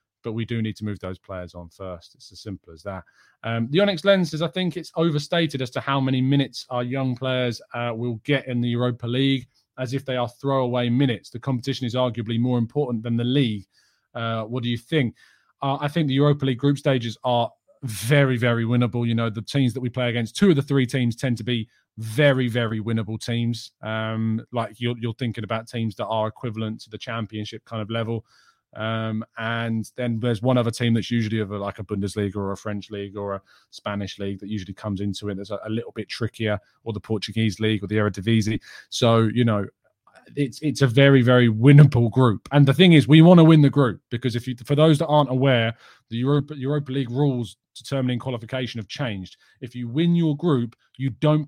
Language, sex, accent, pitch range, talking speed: English, male, British, 110-135 Hz, 220 wpm